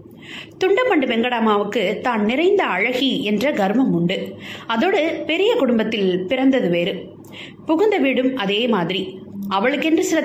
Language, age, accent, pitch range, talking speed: Tamil, 20-39, native, 195-305 Hz, 95 wpm